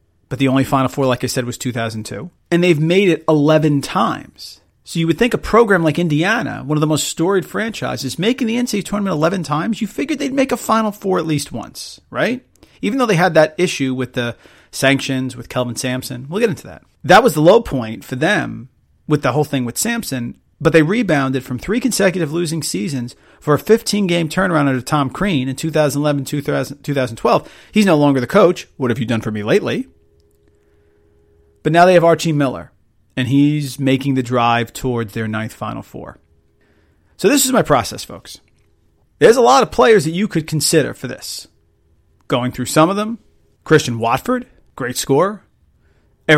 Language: English